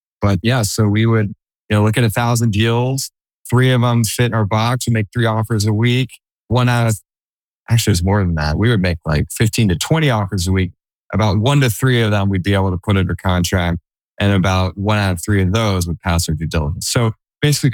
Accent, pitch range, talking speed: American, 90-115 Hz, 245 wpm